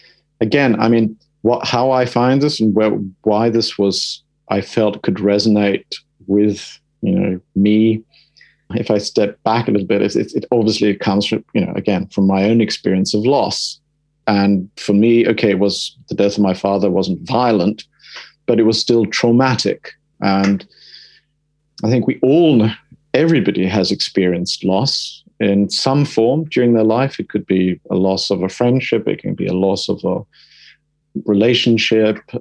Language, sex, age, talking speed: English, male, 50-69, 170 wpm